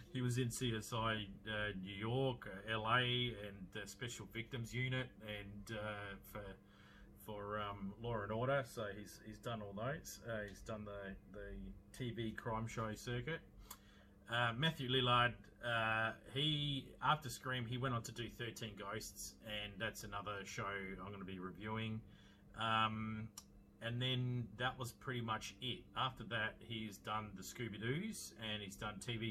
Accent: Australian